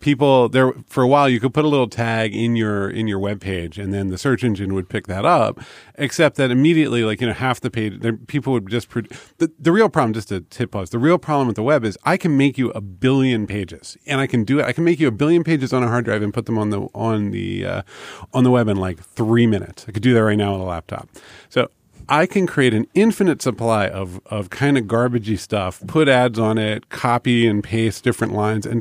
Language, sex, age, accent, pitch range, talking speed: English, male, 40-59, American, 105-135 Hz, 255 wpm